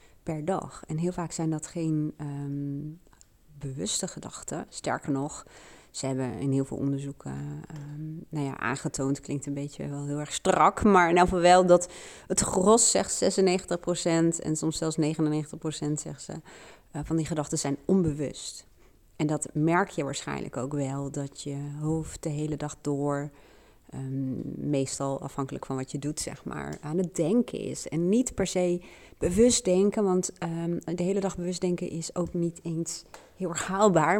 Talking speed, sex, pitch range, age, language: 170 wpm, female, 155-185 Hz, 30-49, Dutch